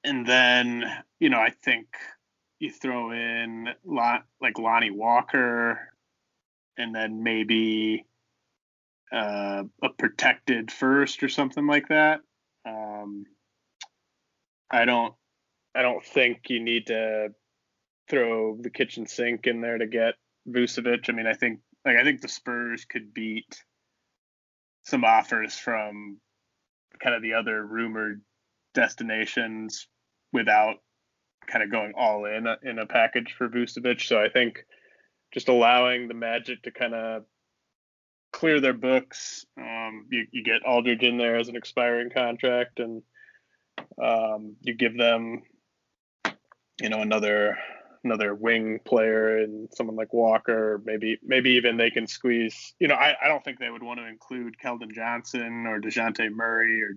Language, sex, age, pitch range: English, male, 20-39, 110-120 Hz